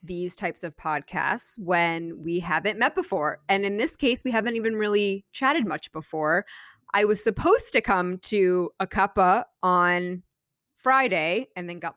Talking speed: 165 wpm